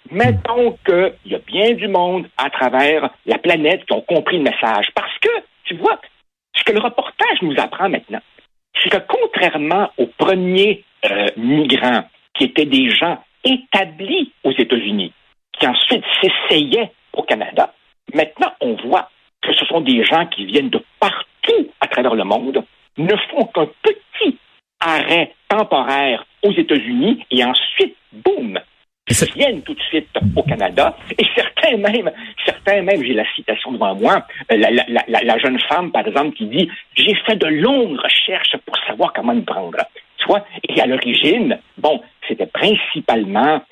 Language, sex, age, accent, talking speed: French, male, 60-79, French, 160 wpm